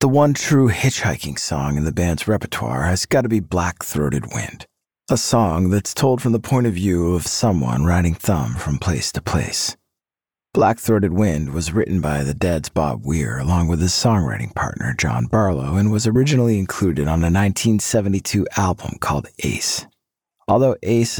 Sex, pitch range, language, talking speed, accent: male, 85-110 Hz, English, 170 wpm, American